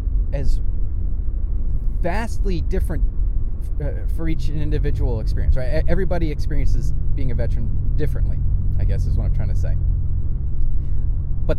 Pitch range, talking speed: 85-105 Hz, 120 wpm